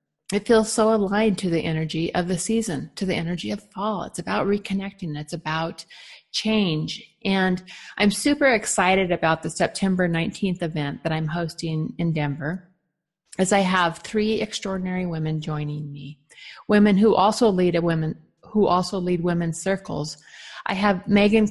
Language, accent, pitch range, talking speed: English, American, 165-205 Hz, 160 wpm